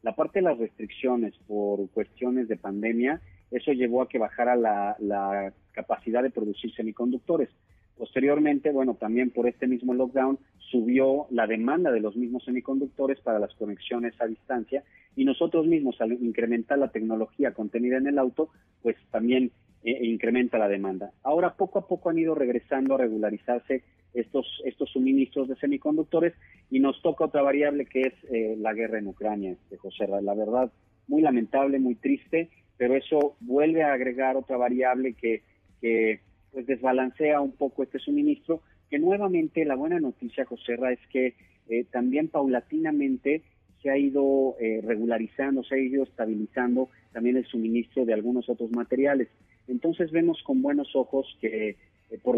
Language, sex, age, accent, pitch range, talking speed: Spanish, male, 40-59, Mexican, 115-140 Hz, 165 wpm